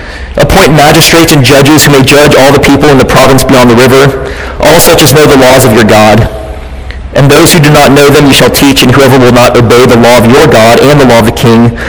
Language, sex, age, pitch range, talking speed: English, male, 30-49, 100-135 Hz, 255 wpm